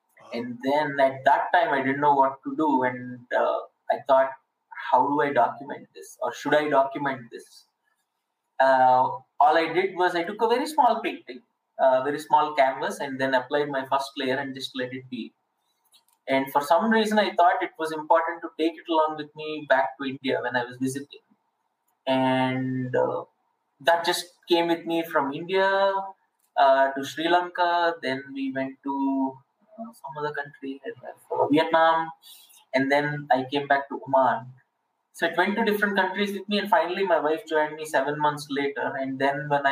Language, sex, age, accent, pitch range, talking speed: English, male, 20-39, Indian, 135-180 Hz, 185 wpm